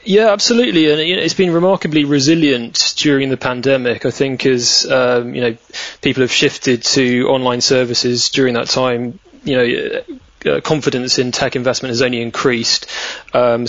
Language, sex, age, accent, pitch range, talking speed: English, male, 20-39, British, 125-140 Hz, 165 wpm